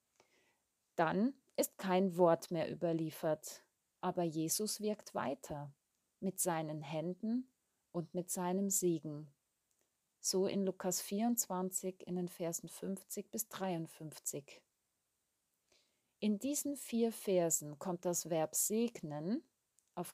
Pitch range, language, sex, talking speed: 165-205 Hz, German, female, 105 wpm